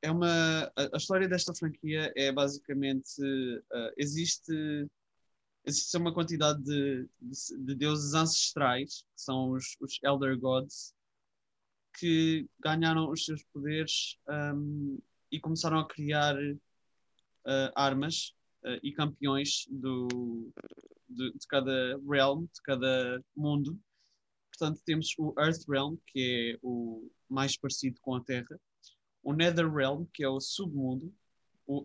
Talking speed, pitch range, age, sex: 130 wpm, 135-160 Hz, 20-39, male